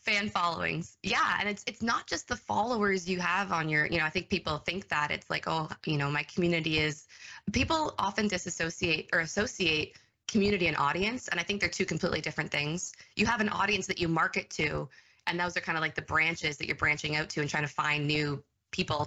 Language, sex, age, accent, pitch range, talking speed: English, female, 20-39, American, 155-185 Hz, 225 wpm